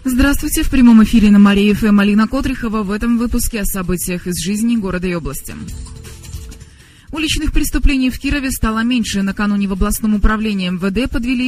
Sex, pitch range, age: female, 185-240 Hz, 20-39